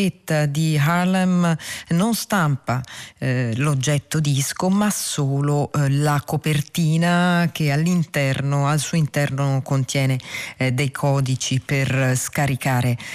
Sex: female